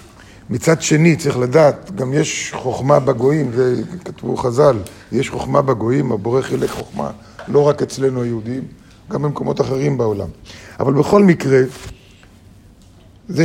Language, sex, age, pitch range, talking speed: Hebrew, male, 50-69, 125-165 Hz, 125 wpm